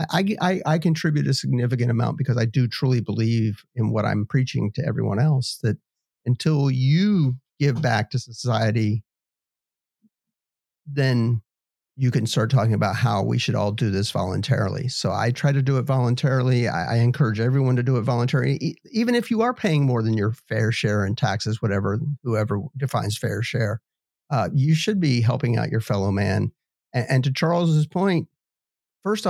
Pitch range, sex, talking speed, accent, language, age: 115-150 Hz, male, 175 wpm, American, English, 50-69